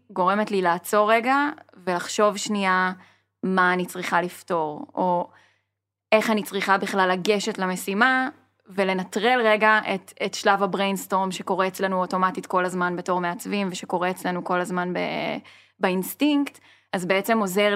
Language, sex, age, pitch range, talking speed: Hebrew, female, 10-29, 180-210 Hz, 130 wpm